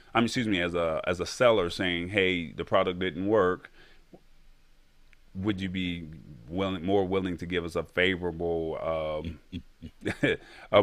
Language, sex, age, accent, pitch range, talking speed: English, male, 30-49, American, 85-95 Hz, 150 wpm